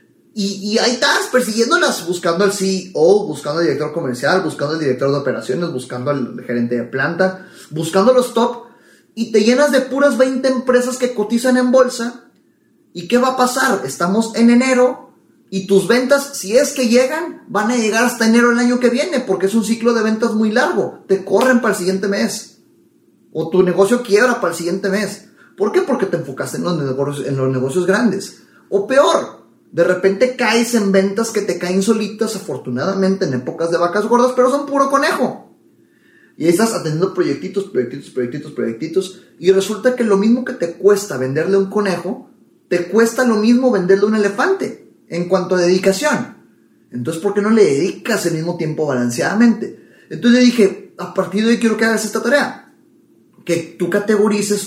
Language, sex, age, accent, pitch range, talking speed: Spanish, male, 30-49, Mexican, 180-240 Hz, 185 wpm